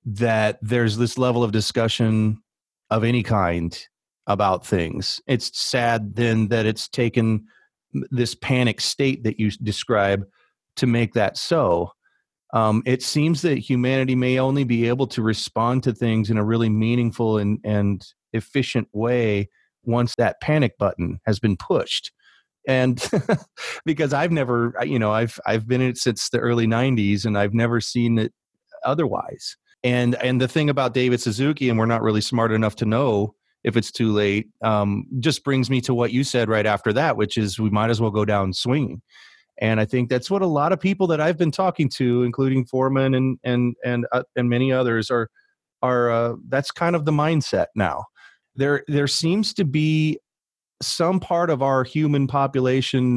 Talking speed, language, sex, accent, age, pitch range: 180 wpm, English, male, American, 30-49, 110-130 Hz